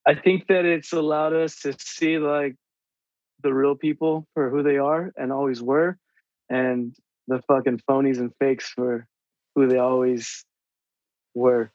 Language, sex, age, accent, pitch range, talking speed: English, male, 20-39, American, 135-155 Hz, 155 wpm